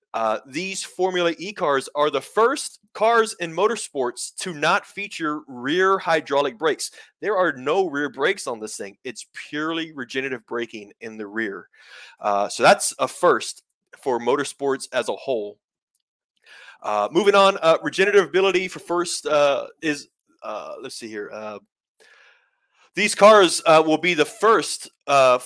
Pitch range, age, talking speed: 135-190 Hz, 30-49, 155 wpm